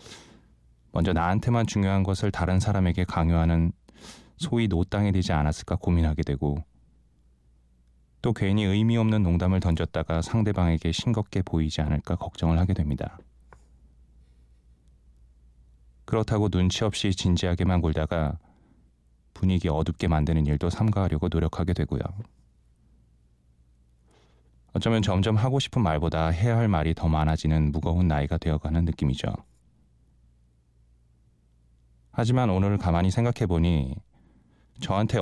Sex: male